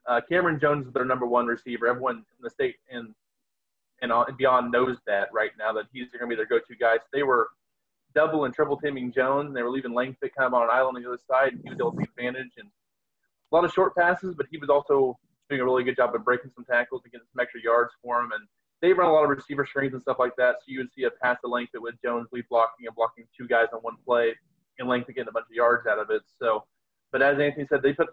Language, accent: English, American